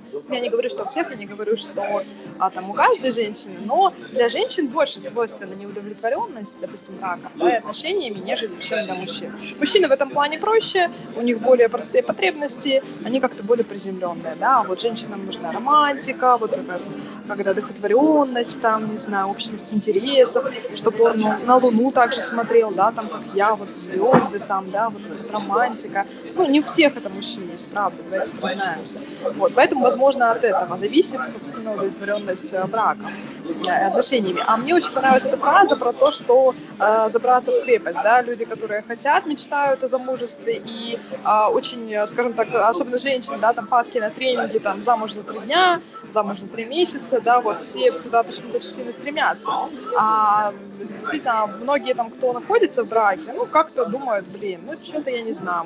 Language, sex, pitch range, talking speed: Russian, female, 215-285 Hz, 175 wpm